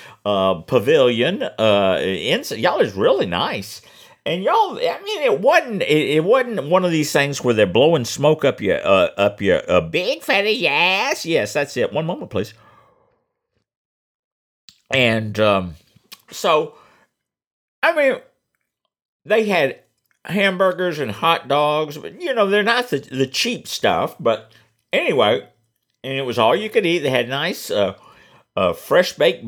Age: 50-69